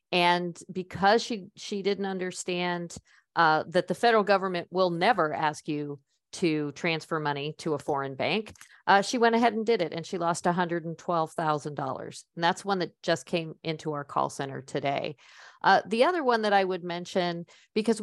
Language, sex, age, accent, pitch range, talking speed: English, female, 50-69, American, 170-215 Hz, 195 wpm